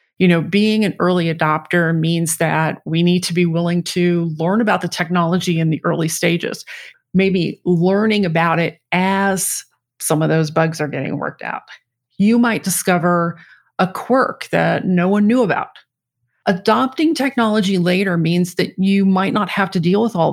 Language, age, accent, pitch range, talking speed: English, 40-59, American, 165-205 Hz, 170 wpm